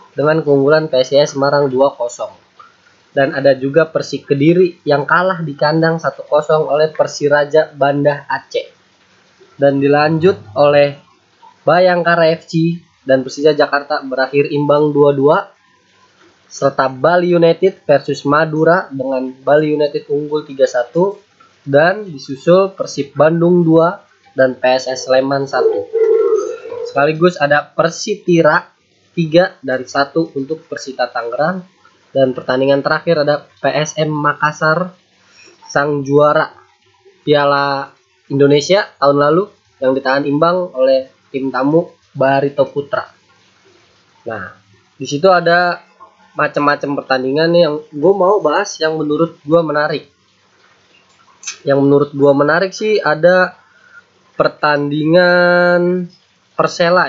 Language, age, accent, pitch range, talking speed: Indonesian, 20-39, native, 140-175 Hz, 105 wpm